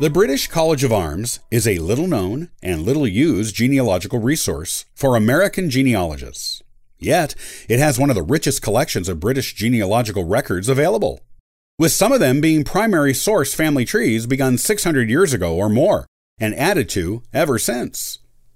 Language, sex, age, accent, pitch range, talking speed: English, male, 40-59, American, 100-145 Hz, 155 wpm